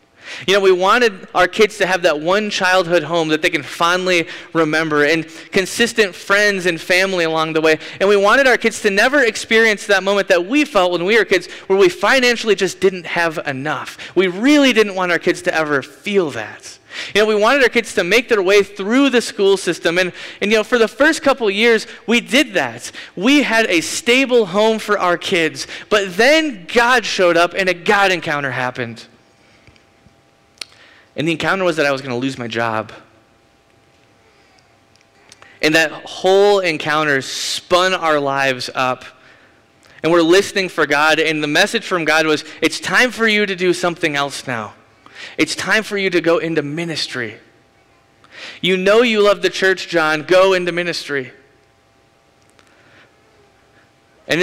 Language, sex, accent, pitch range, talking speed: English, male, American, 150-200 Hz, 180 wpm